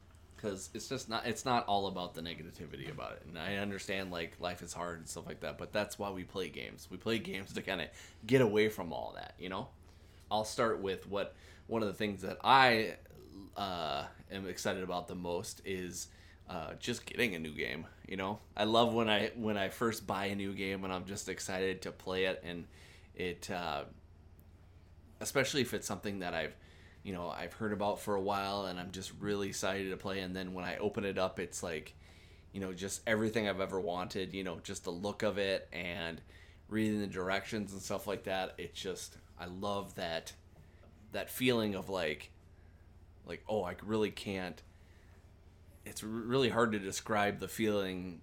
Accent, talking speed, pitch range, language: American, 200 wpm, 85-100 Hz, English